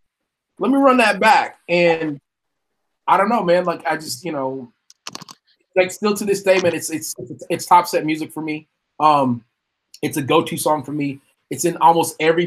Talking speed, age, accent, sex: 195 wpm, 20-39, American, male